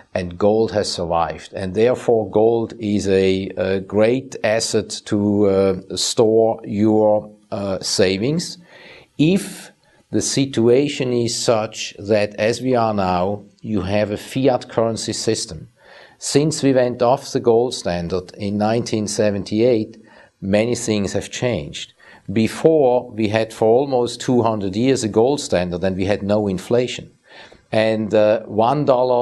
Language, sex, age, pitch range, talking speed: English, male, 50-69, 105-120 Hz, 135 wpm